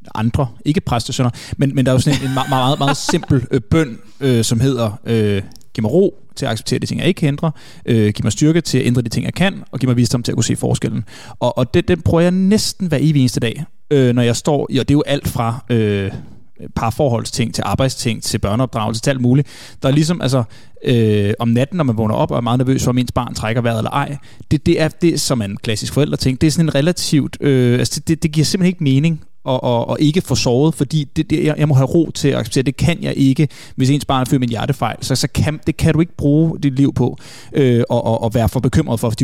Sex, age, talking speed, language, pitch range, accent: male, 30-49, 265 wpm, Danish, 115-145 Hz, native